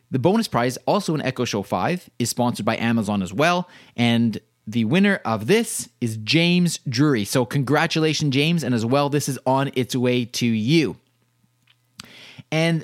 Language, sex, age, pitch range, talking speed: English, male, 30-49, 130-180 Hz, 170 wpm